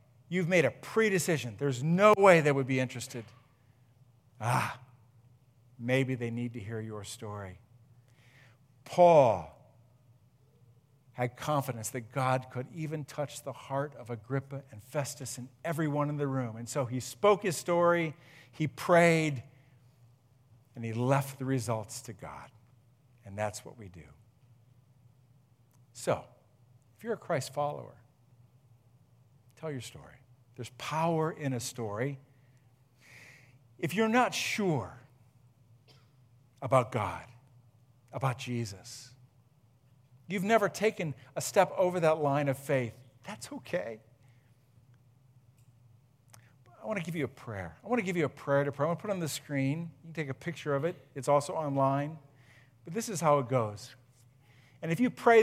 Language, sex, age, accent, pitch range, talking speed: English, male, 50-69, American, 120-145 Hz, 145 wpm